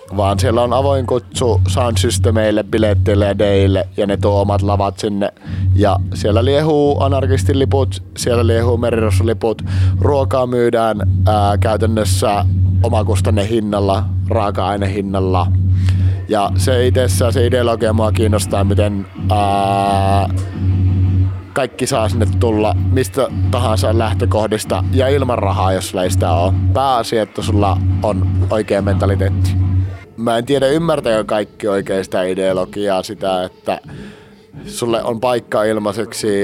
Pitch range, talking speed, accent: 95-115 Hz, 120 wpm, native